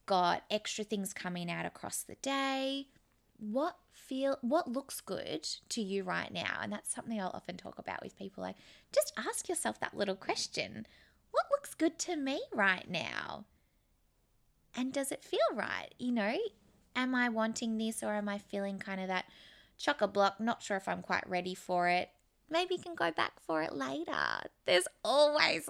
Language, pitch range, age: English, 190-270 Hz, 20-39